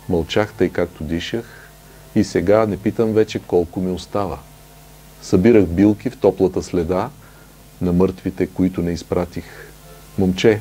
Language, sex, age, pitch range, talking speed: Bulgarian, male, 40-59, 90-115 Hz, 125 wpm